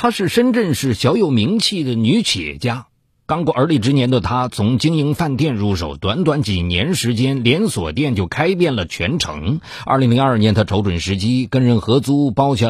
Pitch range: 105-155 Hz